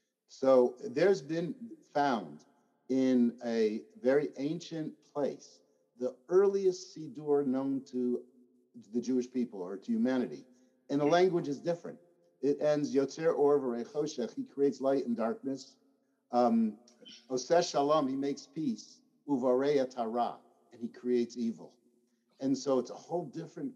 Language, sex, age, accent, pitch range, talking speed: English, male, 60-79, American, 125-170 Hz, 130 wpm